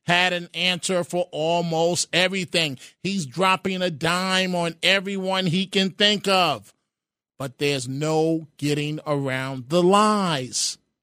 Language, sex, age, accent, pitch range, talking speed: English, male, 40-59, American, 160-210 Hz, 125 wpm